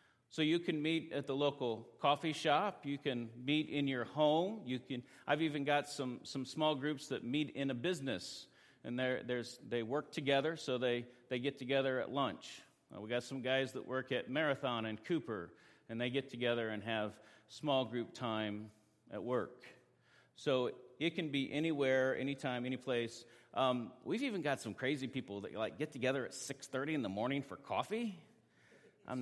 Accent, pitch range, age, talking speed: American, 120-150 Hz, 40-59, 185 wpm